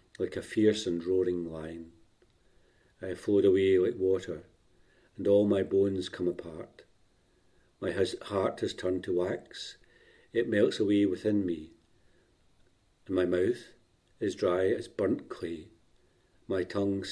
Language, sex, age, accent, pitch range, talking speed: English, male, 50-69, British, 90-105 Hz, 135 wpm